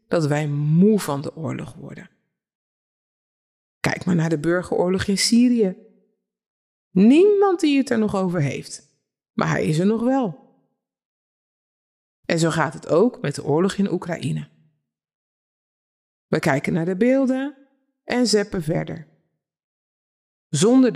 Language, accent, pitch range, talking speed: Dutch, Dutch, 170-255 Hz, 130 wpm